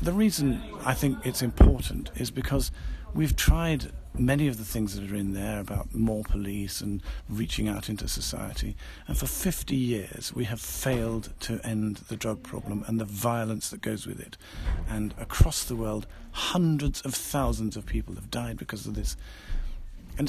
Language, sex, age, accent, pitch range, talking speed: English, male, 50-69, British, 100-135 Hz, 180 wpm